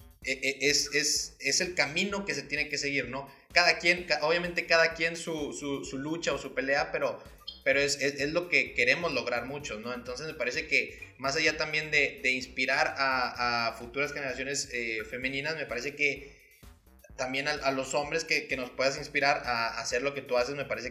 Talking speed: 200 wpm